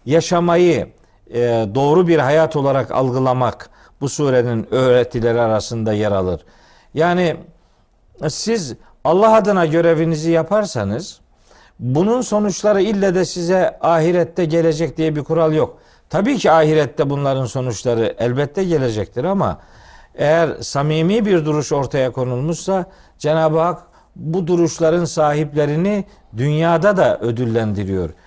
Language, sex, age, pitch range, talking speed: Turkish, male, 50-69, 130-180 Hz, 110 wpm